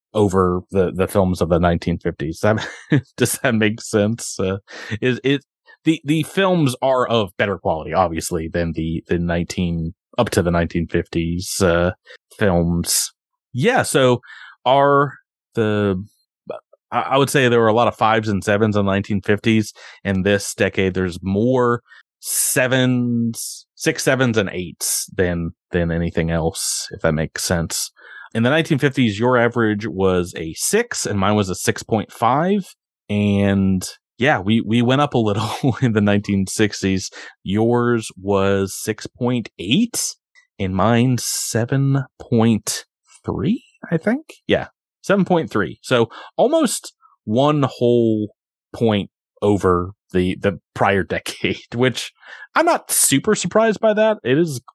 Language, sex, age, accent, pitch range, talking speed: English, male, 30-49, American, 95-130 Hz, 135 wpm